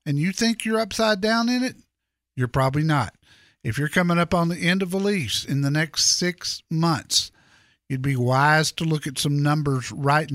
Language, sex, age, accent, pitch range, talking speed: English, male, 50-69, American, 125-155 Hz, 205 wpm